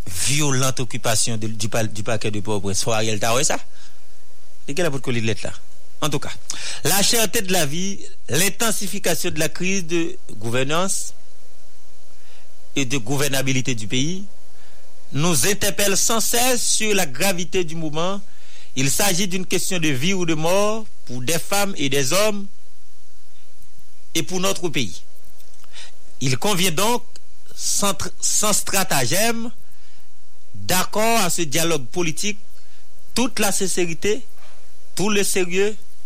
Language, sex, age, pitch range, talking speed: English, male, 50-69, 130-195 Hz, 130 wpm